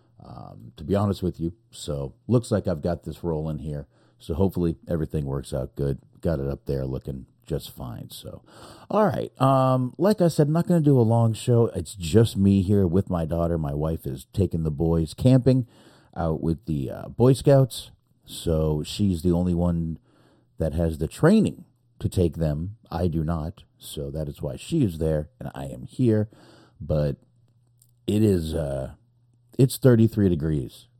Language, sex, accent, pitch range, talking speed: English, male, American, 75-115 Hz, 185 wpm